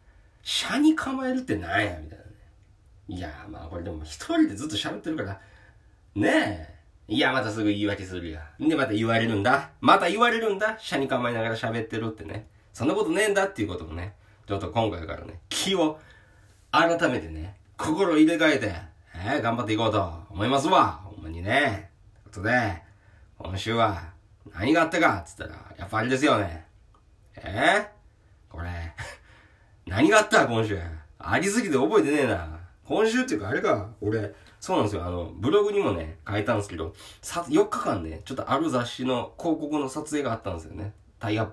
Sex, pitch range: male, 95-115 Hz